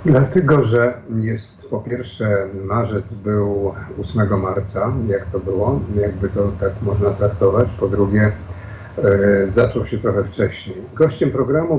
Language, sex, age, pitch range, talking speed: Polish, male, 50-69, 100-120 Hz, 125 wpm